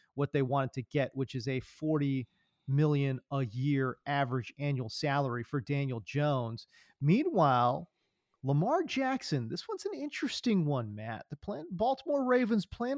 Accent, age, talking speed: American, 40-59, 150 wpm